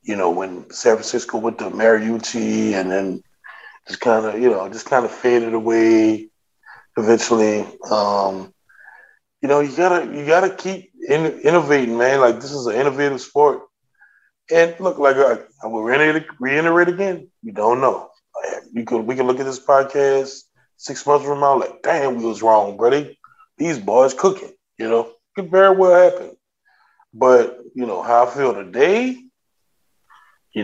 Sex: male